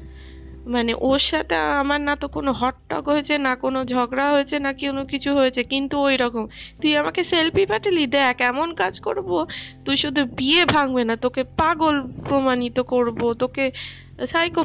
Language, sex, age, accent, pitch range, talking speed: Bengali, female, 20-39, native, 245-320 Hz, 165 wpm